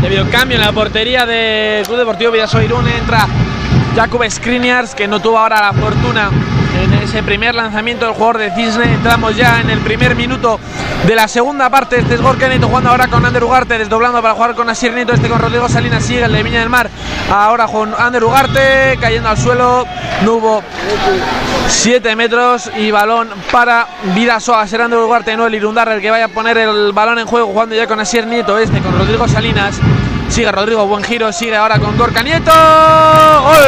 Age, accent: 20-39, Spanish